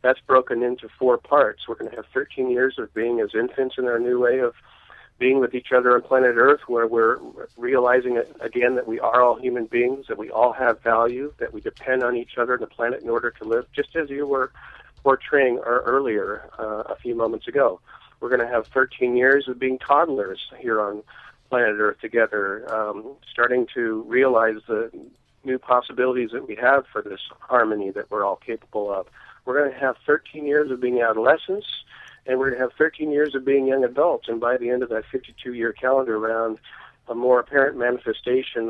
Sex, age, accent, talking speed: male, 40-59, American, 205 wpm